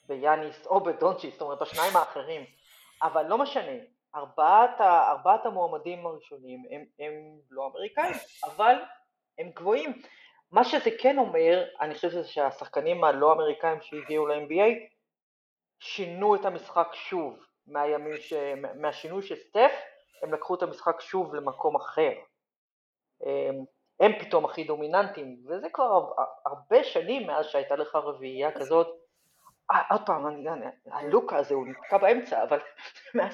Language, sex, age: Hebrew, female, 30-49